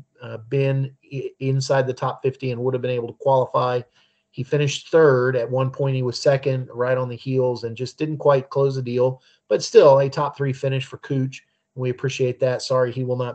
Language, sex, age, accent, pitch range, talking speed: English, male, 40-59, American, 125-150 Hz, 215 wpm